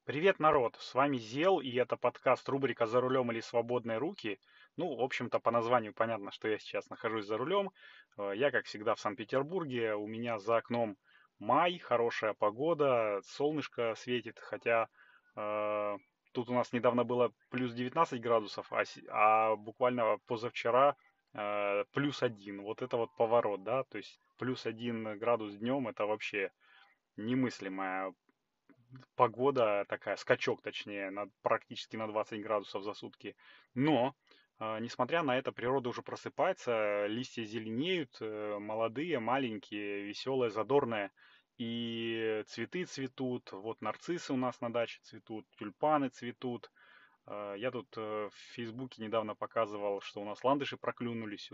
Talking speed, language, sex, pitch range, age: 135 wpm, Russian, male, 105-125 Hz, 20-39